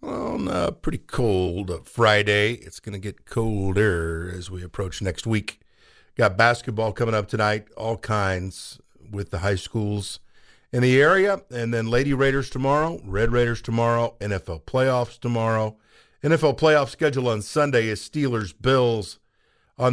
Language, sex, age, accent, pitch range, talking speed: English, male, 50-69, American, 95-120 Hz, 145 wpm